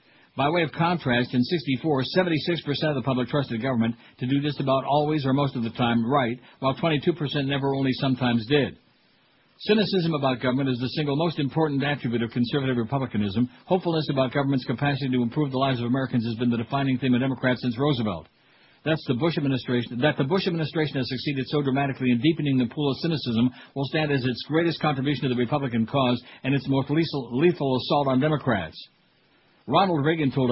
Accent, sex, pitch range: American, male, 125-150 Hz